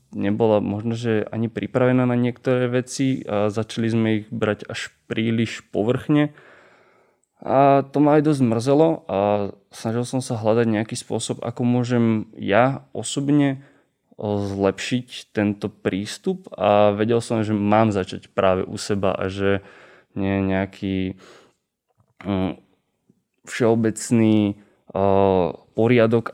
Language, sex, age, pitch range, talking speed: Slovak, male, 20-39, 105-120 Hz, 115 wpm